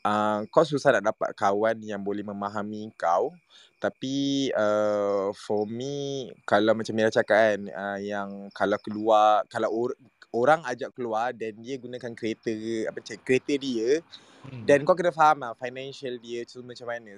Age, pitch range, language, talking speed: 20-39, 105-130 Hz, Malay, 165 wpm